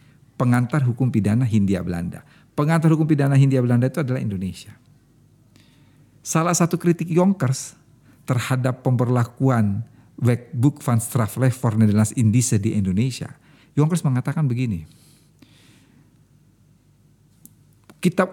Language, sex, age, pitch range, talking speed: Indonesian, male, 50-69, 115-145 Hz, 100 wpm